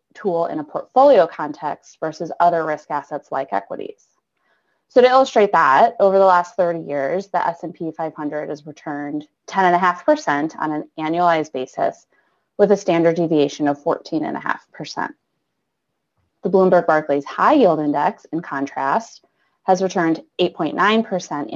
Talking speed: 130 wpm